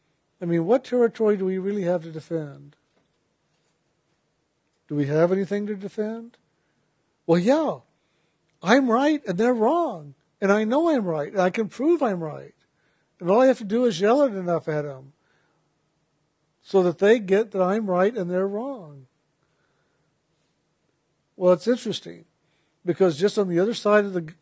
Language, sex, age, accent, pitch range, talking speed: English, male, 60-79, American, 155-200 Hz, 165 wpm